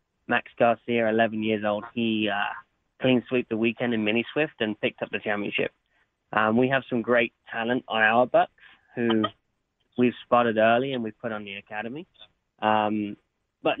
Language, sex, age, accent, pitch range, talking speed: English, male, 20-39, British, 115-130 Hz, 165 wpm